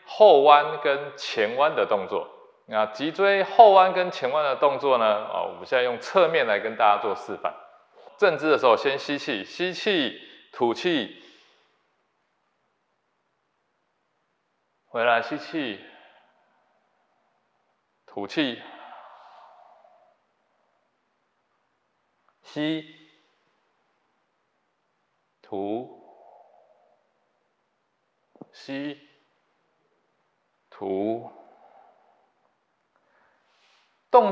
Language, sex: Chinese, male